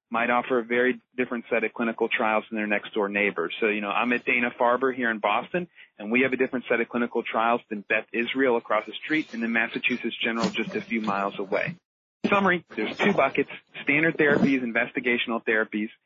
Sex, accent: male, American